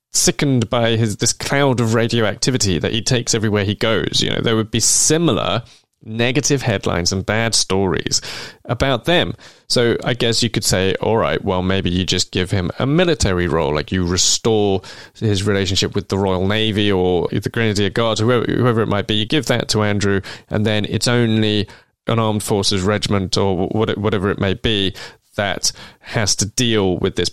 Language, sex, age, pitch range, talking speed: English, male, 20-39, 100-125 Hz, 190 wpm